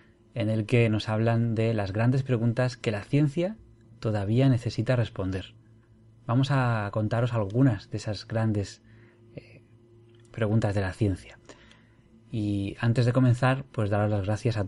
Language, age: Spanish, 20-39